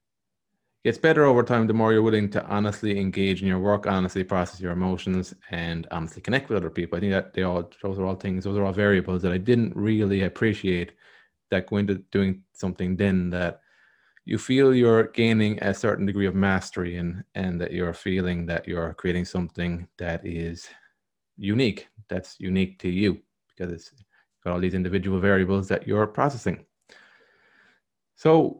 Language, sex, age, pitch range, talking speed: English, male, 20-39, 90-105 Hz, 175 wpm